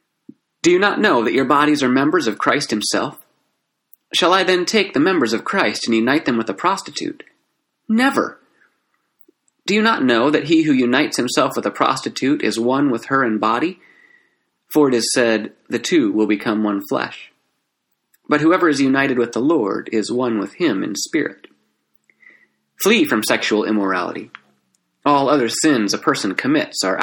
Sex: male